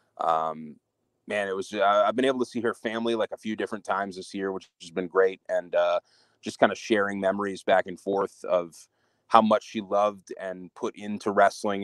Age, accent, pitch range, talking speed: 30-49, American, 95-115 Hz, 215 wpm